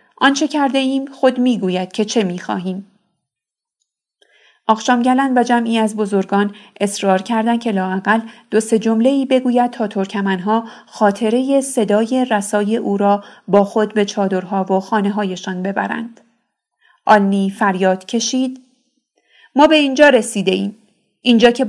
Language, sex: Persian, female